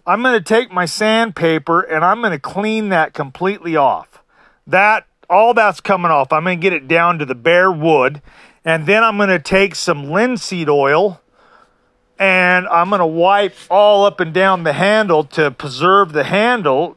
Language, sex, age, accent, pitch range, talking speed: English, male, 40-59, American, 170-220 Hz, 185 wpm